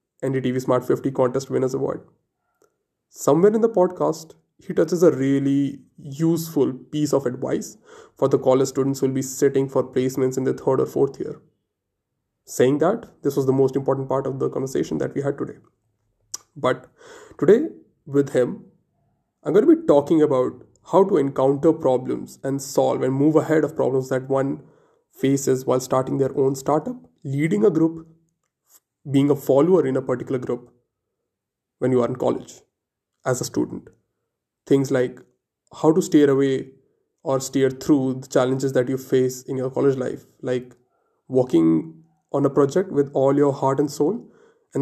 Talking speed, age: 170 wpm, 20-39